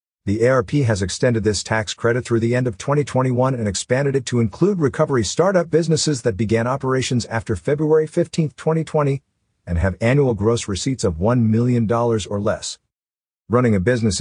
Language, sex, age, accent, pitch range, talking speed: English, male, 50-69, American, 105-130 Hz, 170 wpm